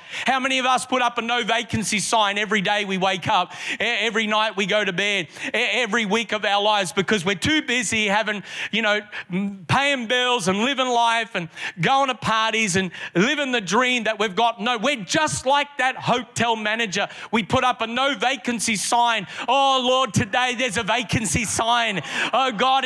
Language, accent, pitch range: English, Australian, 220-260 Hz